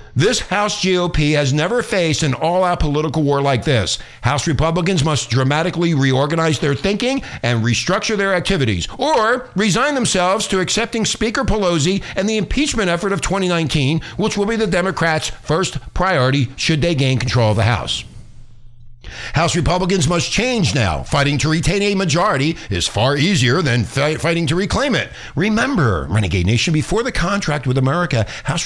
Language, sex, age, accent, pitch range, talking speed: English, male, 60-79, American, 120-180 Hz, 160 wpm